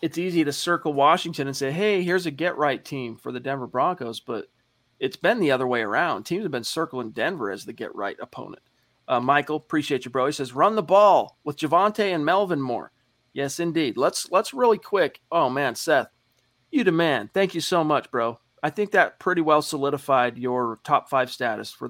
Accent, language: American, English